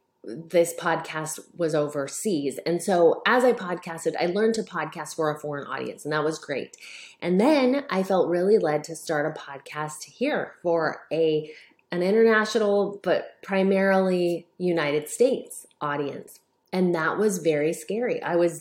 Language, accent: English, American